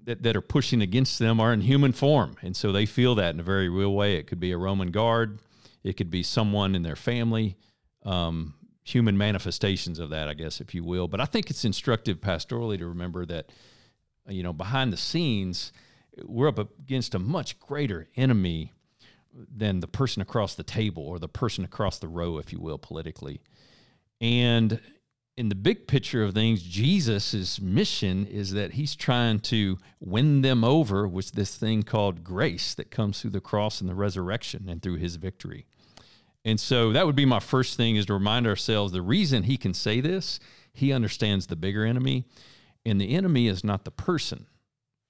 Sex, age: male, 50-69